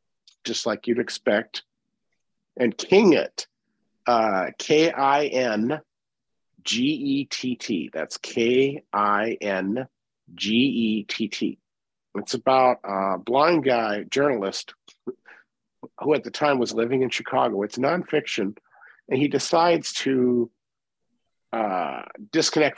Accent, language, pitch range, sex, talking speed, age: American, English, 110-140 Hz, male, 85 wpm, 50-69